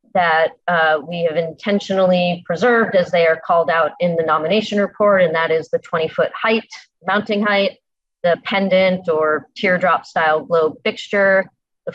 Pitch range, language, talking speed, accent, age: 165-200 Hz, English, 150 wpm, American, 30-49